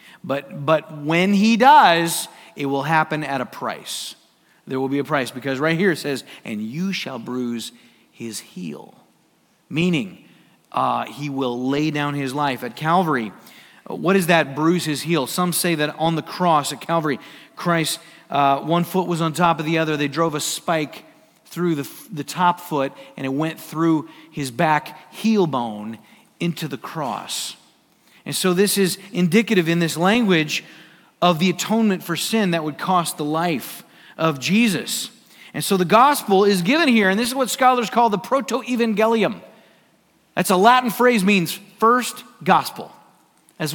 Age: 40-59